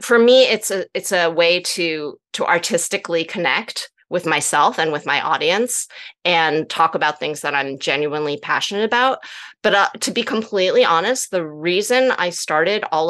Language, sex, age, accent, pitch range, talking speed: English, female, 30-49, American, 160-230 Hz, 170 wpm